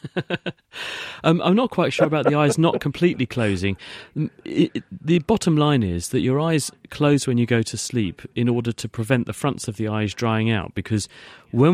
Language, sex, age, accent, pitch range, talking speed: English, male, 40-59, British, 105-125 Hz, 190 wpm